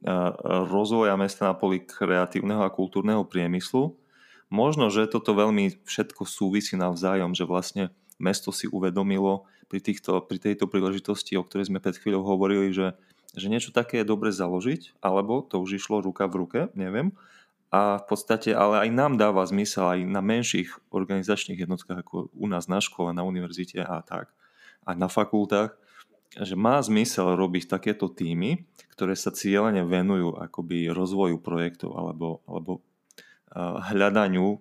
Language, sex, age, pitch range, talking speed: Slovak, male, 20-39, 90-105 Hz, 150 wpm